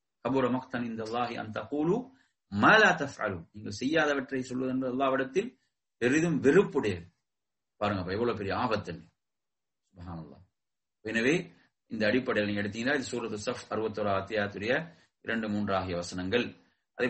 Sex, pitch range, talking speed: male, 110-170 Hz, 90 wpm